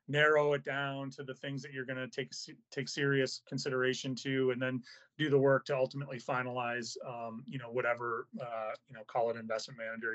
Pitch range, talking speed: 125-145 Hz, 200 wpm